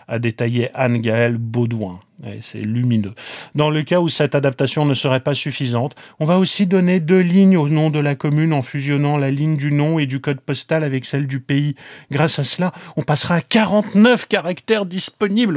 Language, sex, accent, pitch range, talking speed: French, male, French, 120-155 Hz, 195 wpm